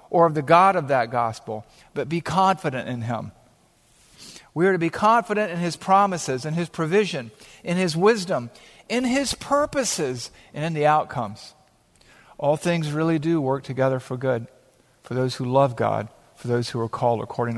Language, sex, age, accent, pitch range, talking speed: English, male, 50-69, American, 120-155 Hz, 180 wpm